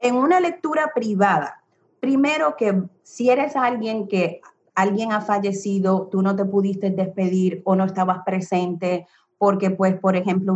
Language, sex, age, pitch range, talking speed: Spanish, female, 30-49, 185-245 Hz, 150 wpm